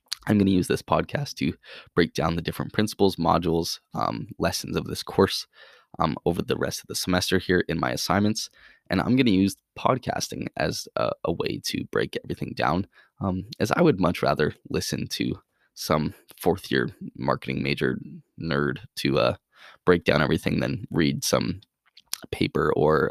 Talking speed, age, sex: 170 wpm, 20-39, male